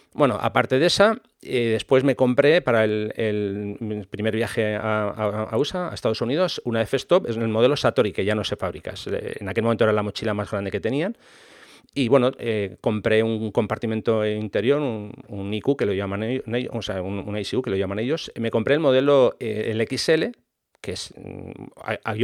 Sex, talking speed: male, 175 wpm